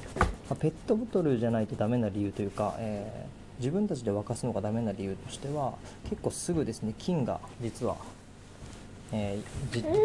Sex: male